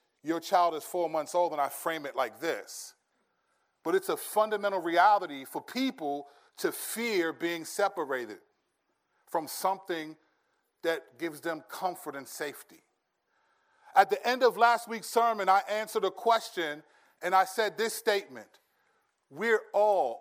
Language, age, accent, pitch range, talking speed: English, 40-59, American, 160-230 Hz, 145 wpm